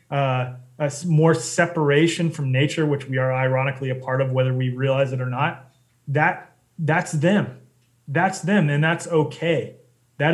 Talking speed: 155 wpm